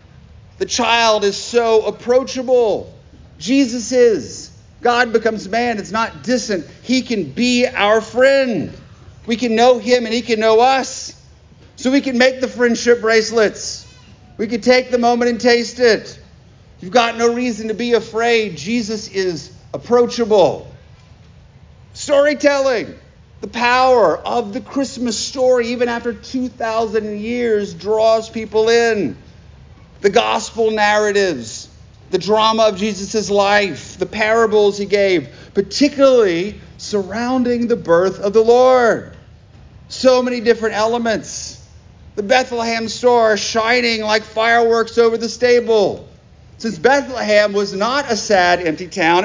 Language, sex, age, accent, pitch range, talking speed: English, male, 40-59, American, 205-245 Hz, 130 wpm